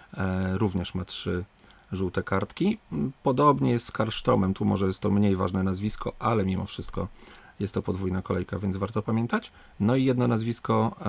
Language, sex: Polish, male